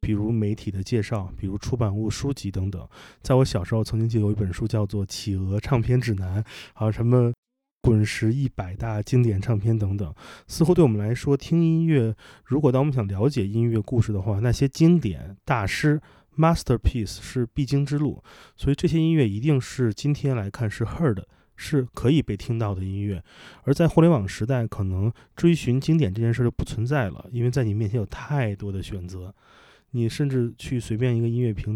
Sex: male